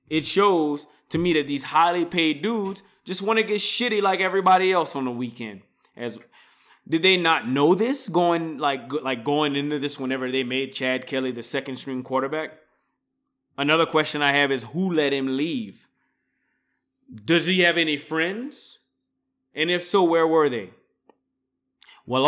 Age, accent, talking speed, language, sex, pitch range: 20-39, American, 165 wpm, English, male, 135-175 Hz